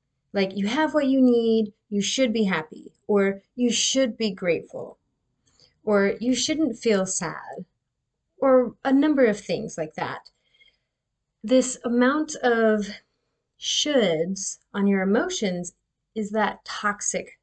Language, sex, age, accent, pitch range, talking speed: English, female, 30-49, American, 200-250 Hz, 125 wpm